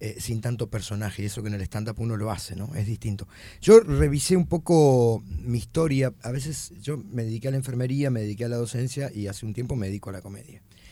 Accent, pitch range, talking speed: Argentinian, 100-135 Hz, 235 wpm